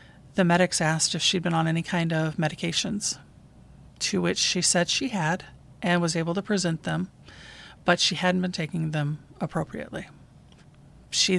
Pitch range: 160-185 Hz